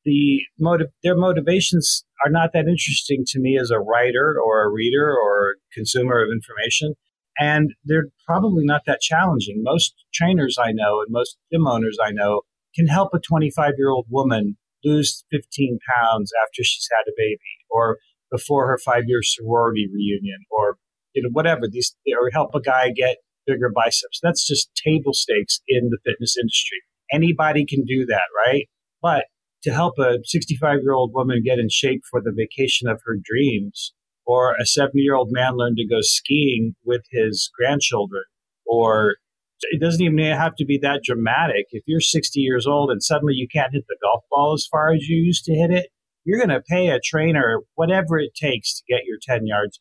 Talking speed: 180 wpm